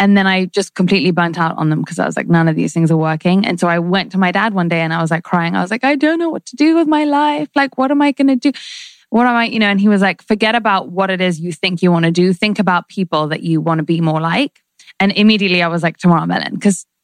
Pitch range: 175-215 Hz